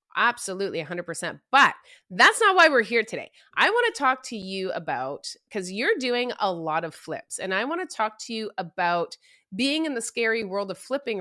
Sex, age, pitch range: female, 30-49, 175-220 Hz